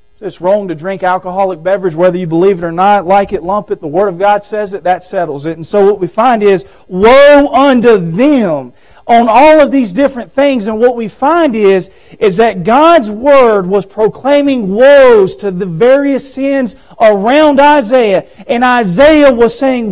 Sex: male